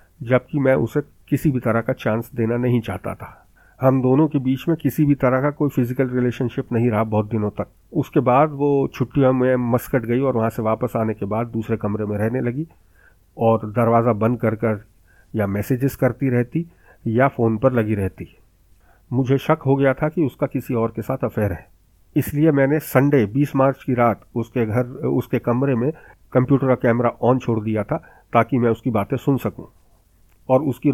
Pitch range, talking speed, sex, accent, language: 110-135 Hz, 200 wpm, male, native, Hindi